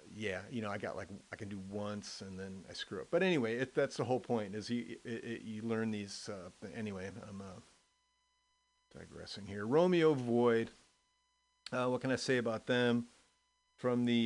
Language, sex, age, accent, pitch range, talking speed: English, male, 40-59, American, 110-140 Hz, 195 wpm